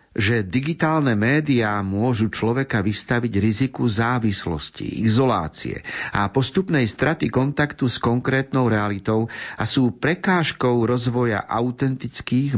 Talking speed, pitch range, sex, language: 100 wpm, 105-135 Hz, male, Slovak